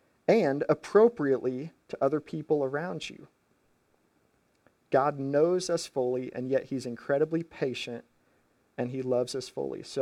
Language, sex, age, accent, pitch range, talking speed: English, male, 40-59, American, 130-160 Hz, 130 wpm